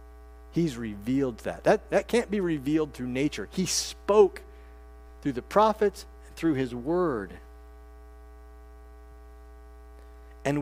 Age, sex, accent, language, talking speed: 50-69, male, American, English, 105 wpm